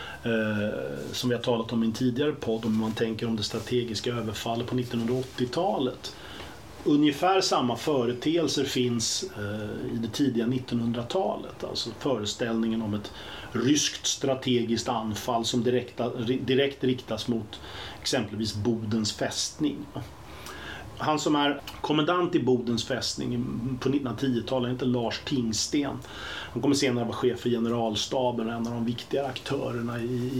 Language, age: Swedish, 30-49